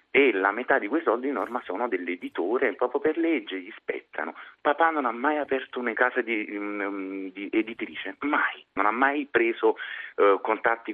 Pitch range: 100-150 Hz